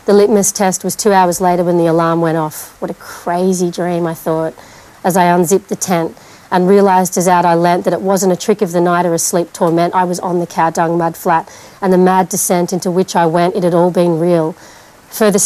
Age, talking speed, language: 40-59, 245 wpm, English